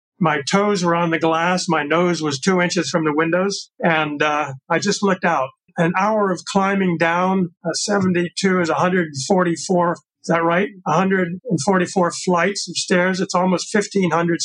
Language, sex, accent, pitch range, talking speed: English, male, American, 160-185 Hz, 160 wpm